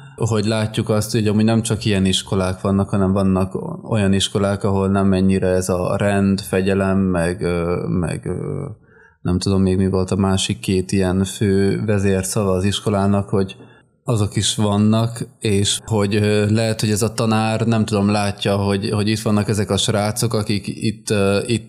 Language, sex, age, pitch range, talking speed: Hungarian, male, 20-39, 95-110 Hz, 165 wpm